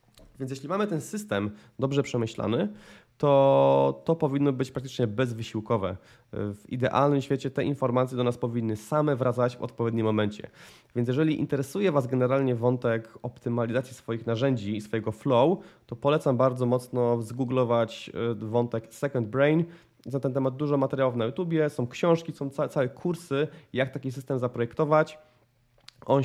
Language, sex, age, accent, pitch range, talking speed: Polish, male, 20-39, native, 115-140 Hz, 145 wpm